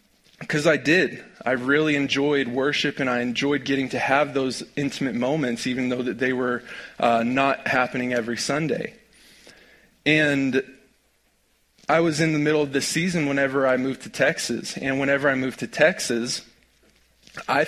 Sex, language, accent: male, English, American